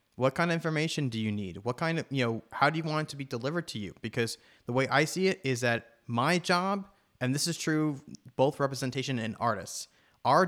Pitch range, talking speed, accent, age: 115-155 Hz, 235 wpm, American, 30-49